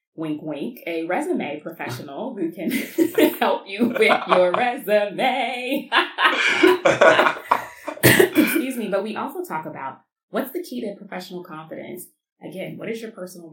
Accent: American